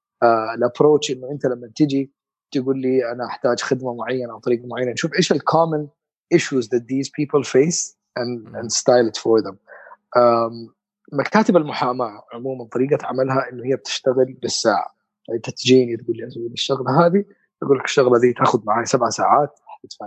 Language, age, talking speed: Arabic, 20-39, 155 wpm